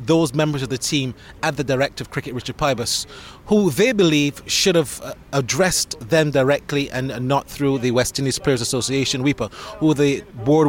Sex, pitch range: male, 135-165 Hz